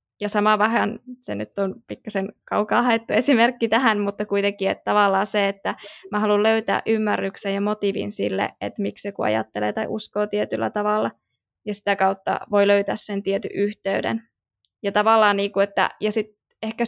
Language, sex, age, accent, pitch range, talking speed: Finnish, female, 20-39, native, 195-220 Hz, 165 wpm